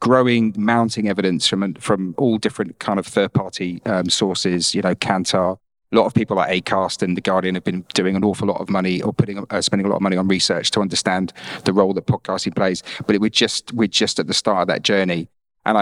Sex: male